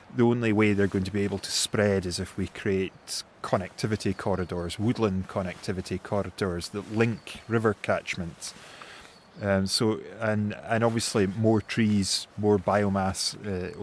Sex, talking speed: male, 145 wpm